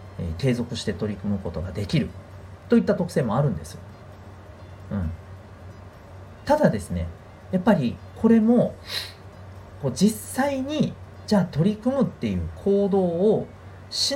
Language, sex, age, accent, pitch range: Japanese, male, 40-59, native, 95-140 Hz